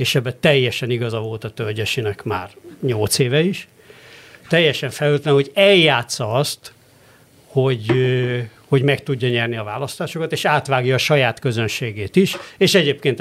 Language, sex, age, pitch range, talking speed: Hungarian, male, 60-79, 130-165 Hz, 140 wpm